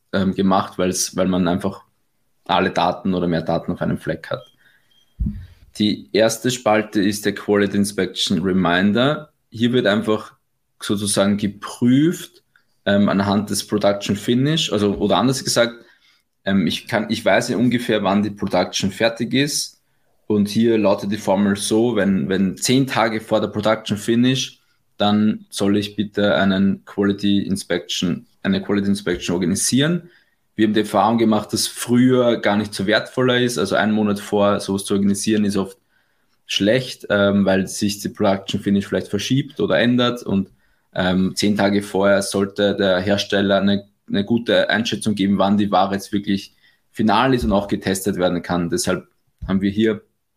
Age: 20-39